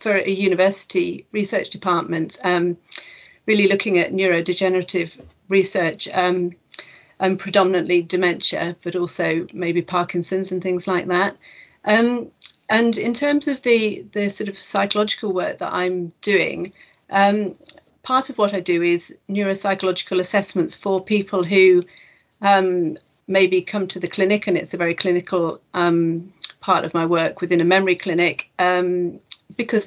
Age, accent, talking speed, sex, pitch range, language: 40-59, British, 140 wpm, female, 175-195 Hz, English